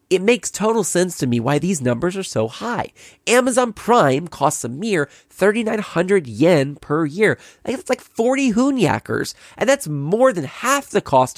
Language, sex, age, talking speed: English, male, 30-49, 170 wpm